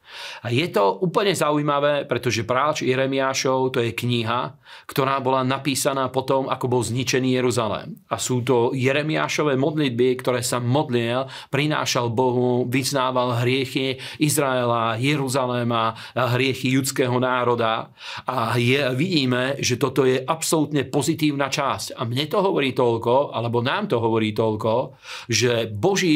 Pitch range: 125-140 Hz